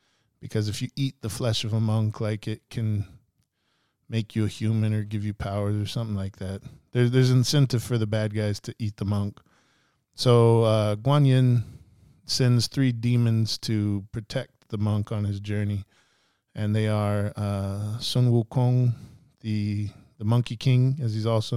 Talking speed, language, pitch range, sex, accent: 175 wpm, English, 105-125 Hz, male, American